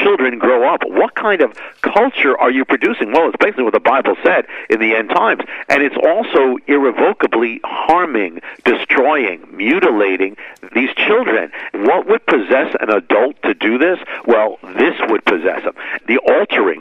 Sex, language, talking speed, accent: male, English, 160 wpm, American